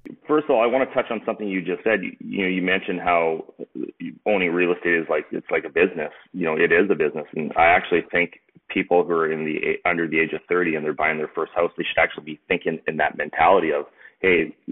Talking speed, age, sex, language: 255 wpm, 30-49, male, English